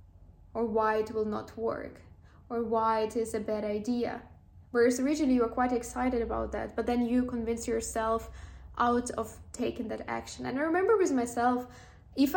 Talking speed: 180 wpm